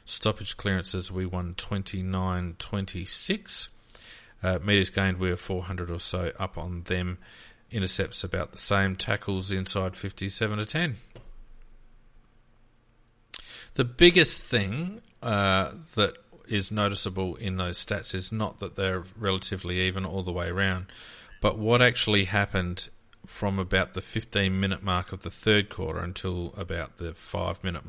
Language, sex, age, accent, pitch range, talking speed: English, male, 40-59, Australian, 90-110 Hz, 135 wpm